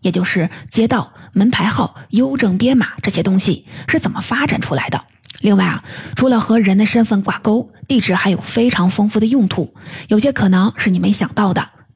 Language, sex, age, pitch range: Chinese, female, 30-49, 185-230 Hz